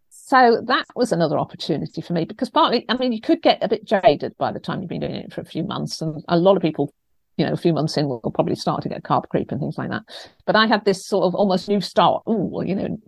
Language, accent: English, British